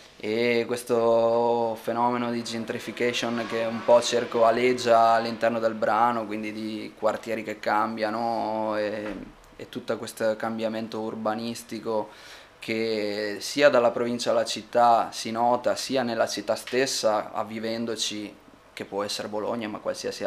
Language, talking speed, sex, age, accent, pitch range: Italian, 125 wpm, male, 20-39, native, 105-115 Hz